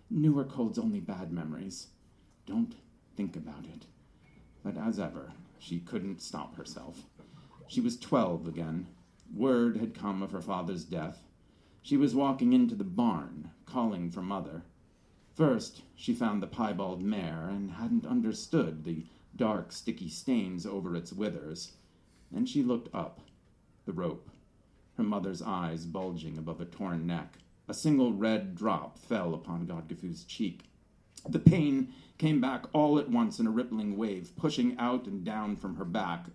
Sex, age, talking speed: male, 40-59, 150 wpm